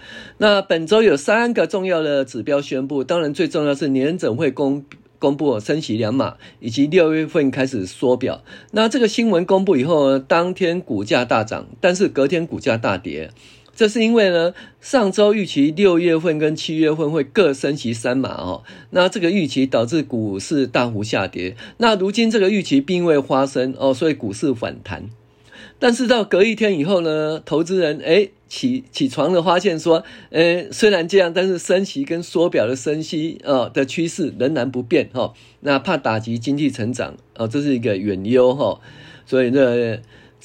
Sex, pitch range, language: male, 125-175 Hz, Chinese